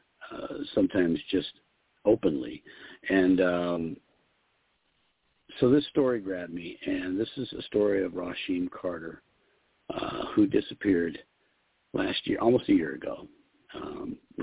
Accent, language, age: American, English, 50-69